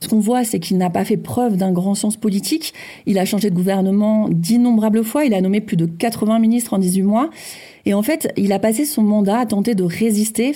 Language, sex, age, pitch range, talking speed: French, female, 40-59, 185-235 Hz, 240 wpm